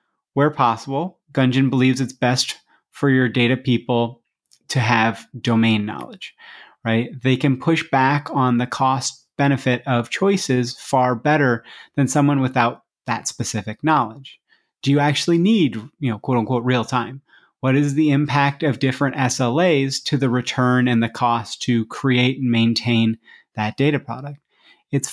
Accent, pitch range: American, 120-145 Hz